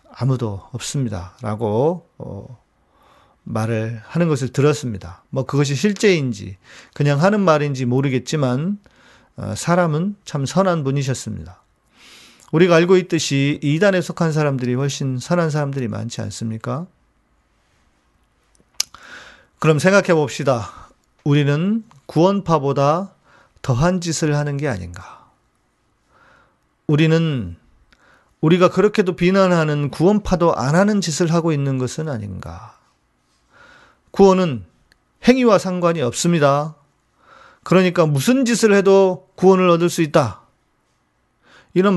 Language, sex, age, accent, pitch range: Korean, male, 40-59, native, 120-175 Hz